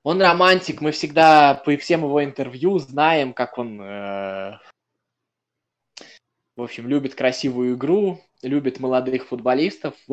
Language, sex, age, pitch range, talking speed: Russian, male, 20-39, 140-190 Hz, 130 wpm